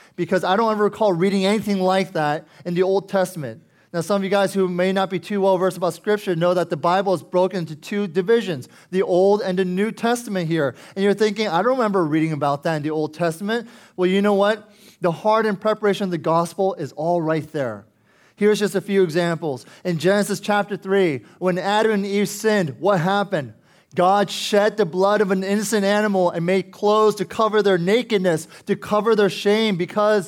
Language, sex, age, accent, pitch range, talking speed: English, male, 20-39, American, 180-210 Hz, 210 wpm